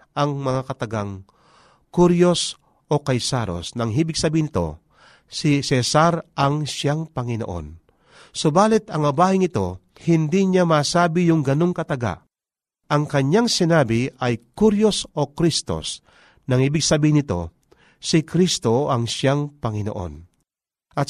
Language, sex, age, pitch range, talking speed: Filipino, male, 40-59, 110-165 Hz, 115 wpm